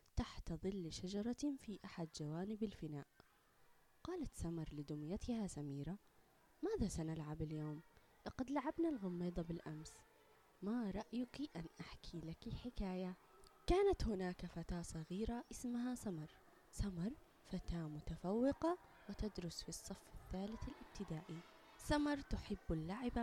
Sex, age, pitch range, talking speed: female, 20-39, 170-240 Hz, 105 wpm